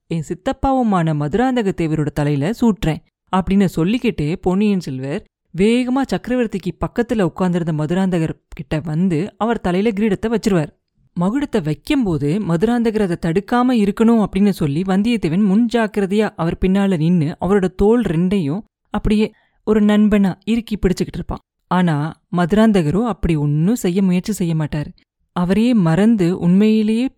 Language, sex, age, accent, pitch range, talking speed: Tamil, female, 30-49, native, 175-225 Hz, 115 wpm